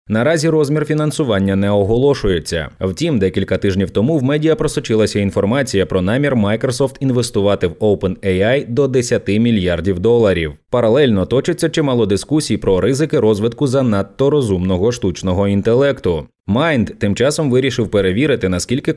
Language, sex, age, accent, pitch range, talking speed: Ukrainian, male, 20-39, native, 95-135 Hz, 125 wpm